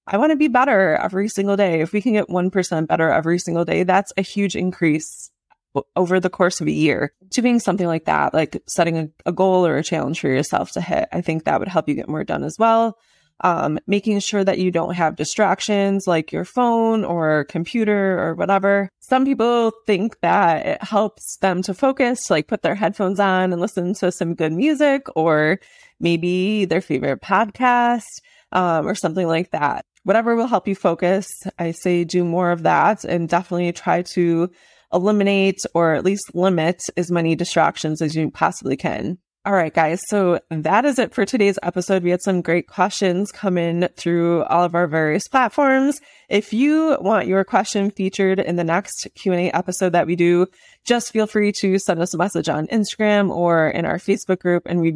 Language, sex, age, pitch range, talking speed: English, female, 20-39, 170-205 Hz, 195 wpm